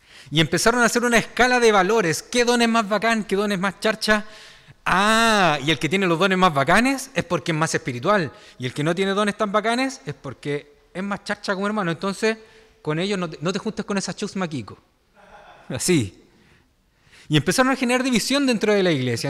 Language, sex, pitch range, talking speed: Spanish, male, 170-225 Hz, 215 wpm